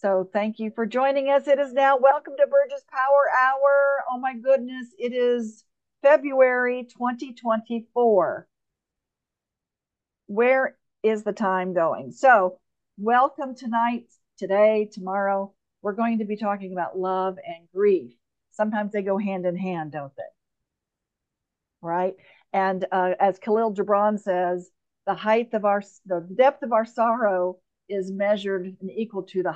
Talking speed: 140 wpm